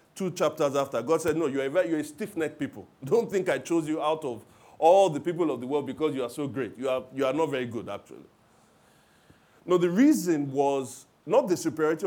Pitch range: 135-180 Hz